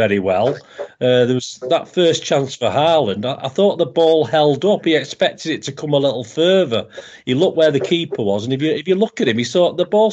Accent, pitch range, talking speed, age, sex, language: British, 120-160 Hz, 255 wpm, 40-59, male, English